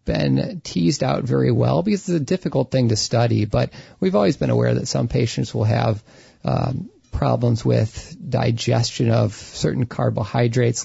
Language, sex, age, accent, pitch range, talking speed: English, male, 40-59, American, 115-130 Hz, 160 wpm